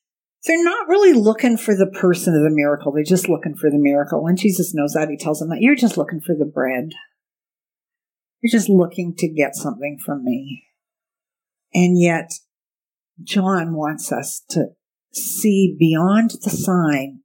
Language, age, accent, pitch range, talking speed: English, 50-69, American, 170-240 Hz, 165 wpm